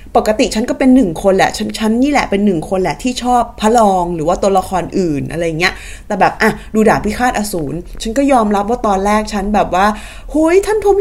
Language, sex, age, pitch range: Thai, female, 20-39, 210-295 Hz